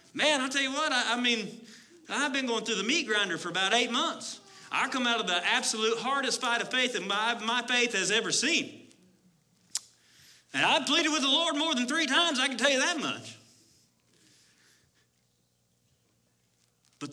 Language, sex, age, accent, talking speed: English, male, 40-59, American, 185 wpm